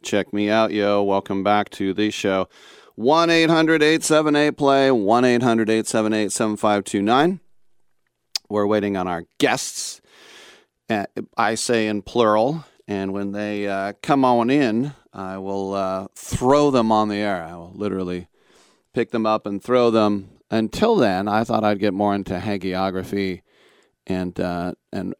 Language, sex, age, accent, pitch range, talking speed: English, male, 40-59, American, 100-125 Hz, 130 wpm